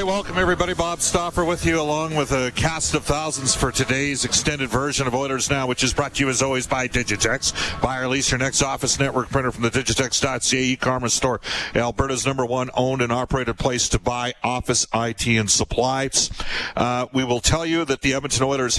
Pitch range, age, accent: 115-135 Hz, 50-69, American